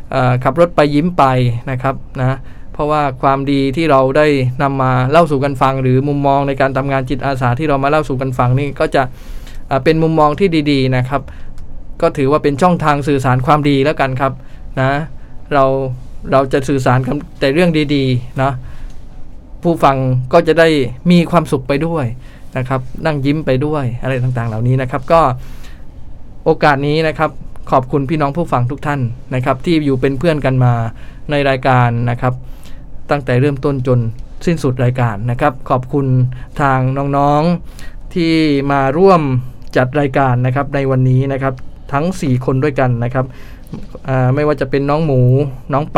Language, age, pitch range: English, 20-39, 130-150 Hz